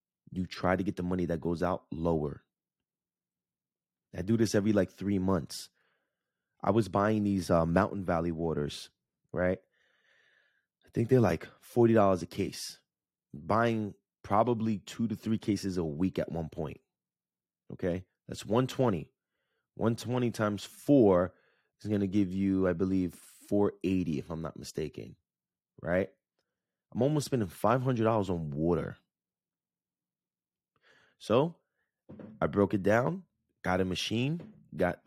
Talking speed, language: 135 wpm, English